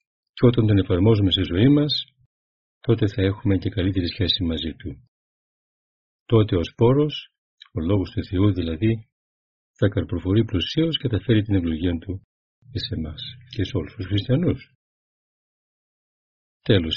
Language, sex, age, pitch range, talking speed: Greek, male, 40-59, 90-125 Hz, 140 wpm